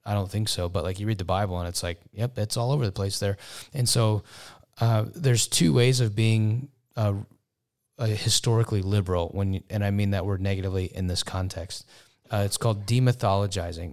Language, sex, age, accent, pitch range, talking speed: English, male, 30-49, American, 95-115 Hz, 200 wpm